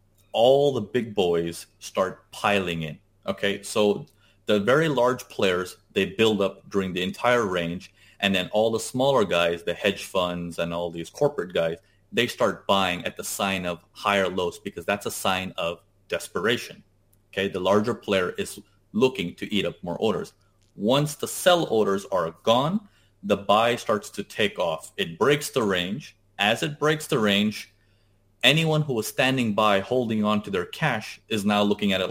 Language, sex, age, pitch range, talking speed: English, male, 30-49, 95-120 Hz, 180 wpm